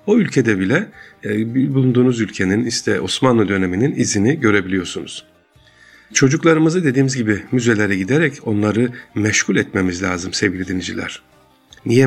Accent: native